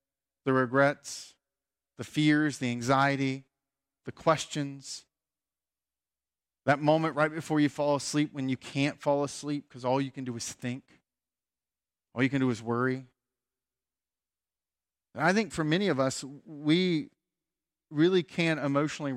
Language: English